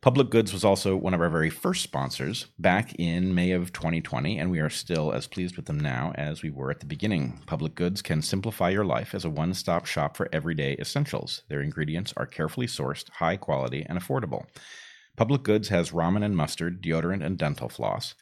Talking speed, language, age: 205 wpm, English, 40-59